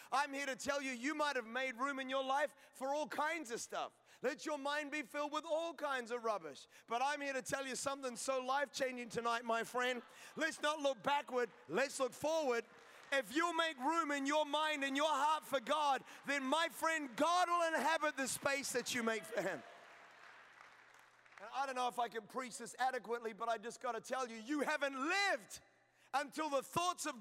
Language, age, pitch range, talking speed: English, 30-49, 225-280 Hz, 205 wpm